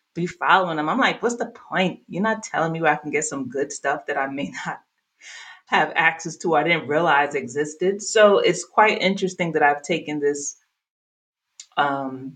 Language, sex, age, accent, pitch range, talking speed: English, female, 30-49, American, 155-205 Hz, 195 wpm